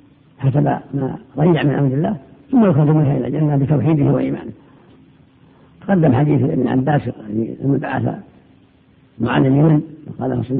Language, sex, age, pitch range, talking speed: Arabic, female, 60-79, 140-160 Hz, 130 wpm